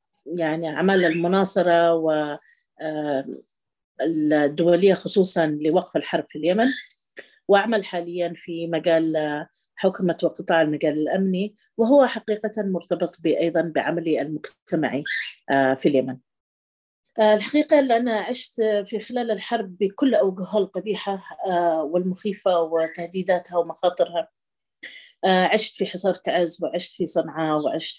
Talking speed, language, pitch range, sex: 95 wpm, Arabic, 155-195 Hz, female